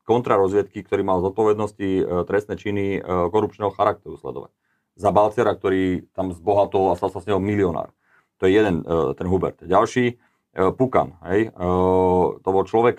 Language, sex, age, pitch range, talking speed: Slovak, male, 30-49, 90-105 Hz, 170 wpm